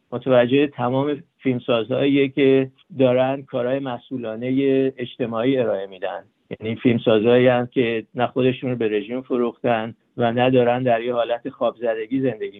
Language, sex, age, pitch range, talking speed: Persian, male, 50-69, 120-135 Hz, 135 wpm